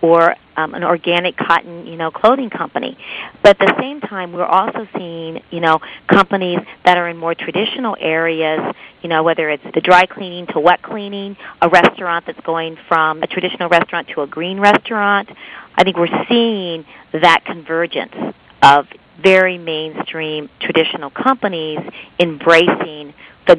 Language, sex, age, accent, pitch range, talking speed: English, female, 40-59, American, 155-180 Hz, 155 wpm